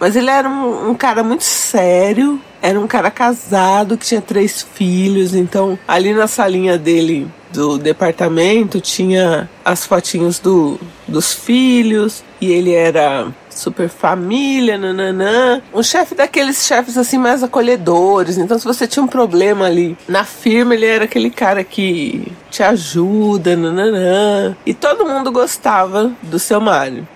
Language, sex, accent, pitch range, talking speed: Portuguese, female, Brazilian, 175-250 Hz, 145 wpm